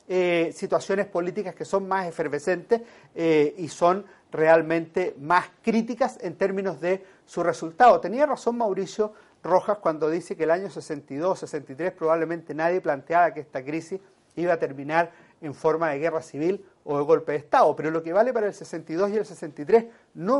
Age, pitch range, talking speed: 40-59, 160-195 Hz, 175 wpm